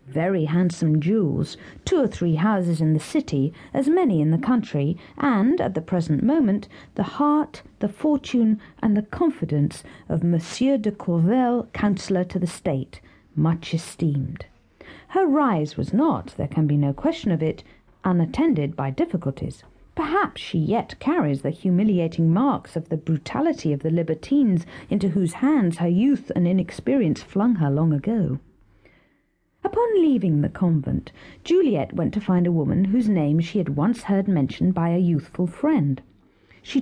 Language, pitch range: English, 155-245 Hz